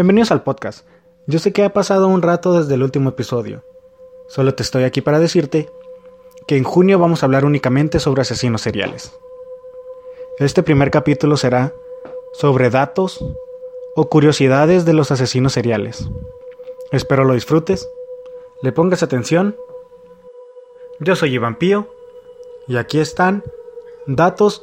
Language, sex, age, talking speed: Spanish, male, 20-39, 135 wpm